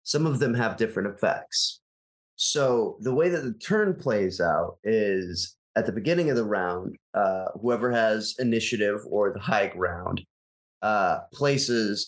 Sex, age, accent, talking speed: male, 30-49, American, 155 wpm